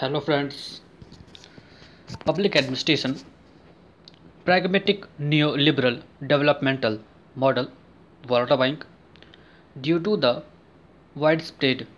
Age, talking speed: 20-39, 70 wpm